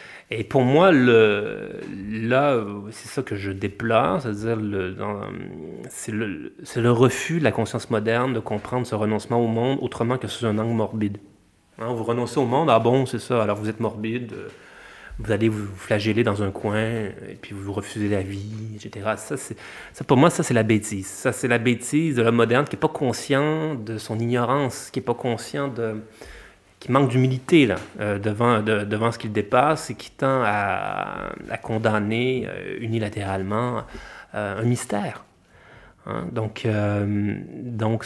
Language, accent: French, French